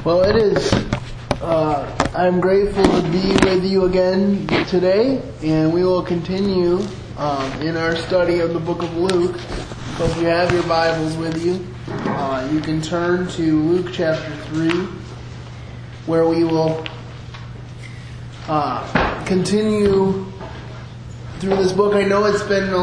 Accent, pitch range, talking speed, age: American, 140-185 Hz, 145 wpm, 20-39